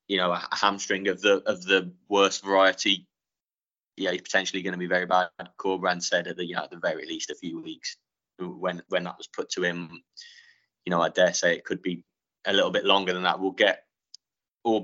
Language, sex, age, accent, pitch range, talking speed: English, male, 20-39, British, 95-110 Hz, 225 wpm